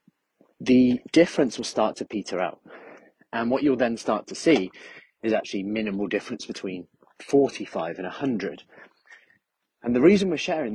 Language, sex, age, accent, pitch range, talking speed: English, male, 30-49, British, 100-125 Hz, 150 wpm